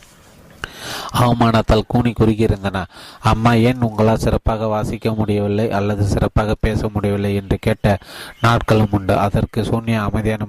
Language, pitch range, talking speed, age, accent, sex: Tamil, 105-115 Hz, 115 wpm, 30-49, native, male